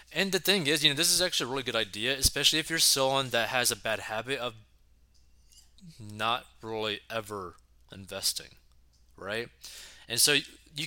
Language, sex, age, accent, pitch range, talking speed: English, male, 20-39, American, 105-130 Hz, 170 wpm